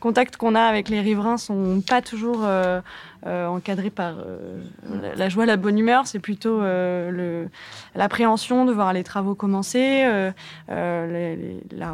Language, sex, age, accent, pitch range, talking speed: French, female, 20-39, French, 185-225 Hz, 180 wpm